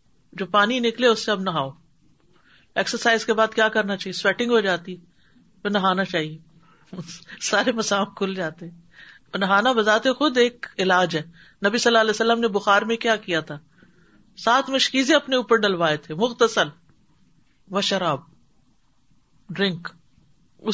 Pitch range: 175-235 Hz